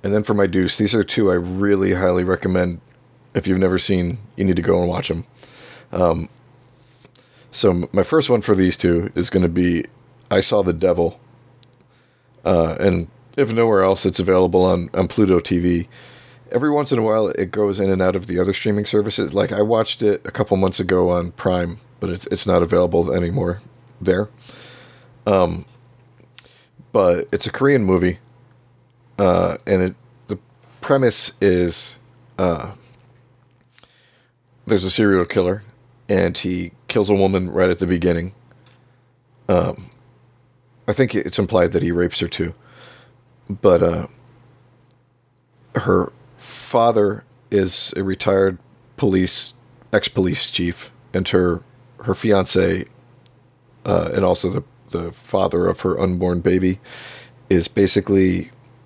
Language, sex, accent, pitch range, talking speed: English, male, American, 95-125 Hz, 150 wpm